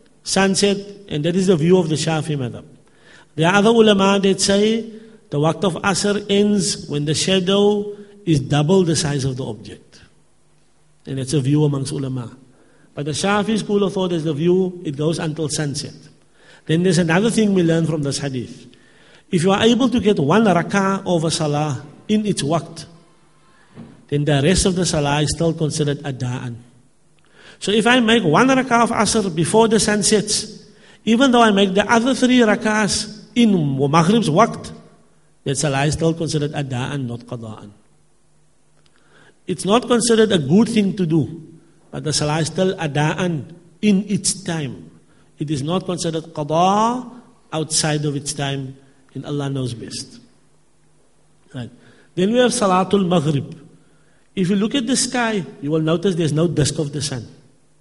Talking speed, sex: 170 wpm, male